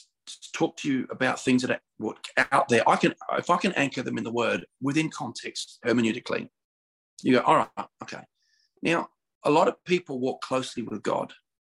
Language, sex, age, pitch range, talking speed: English, male, 40-59, 125-190 Hz, 185 wpm